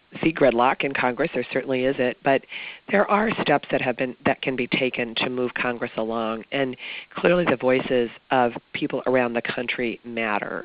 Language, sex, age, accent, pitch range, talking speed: English, female, 40-59, American, 125-140 Hz, 185 wpm